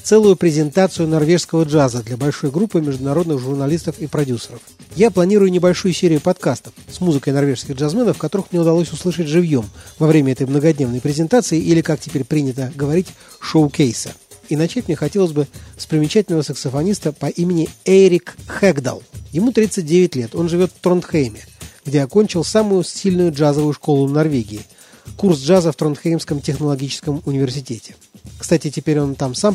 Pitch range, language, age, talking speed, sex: 145-180 Hz, Russian, 40-59, 150 wpm, male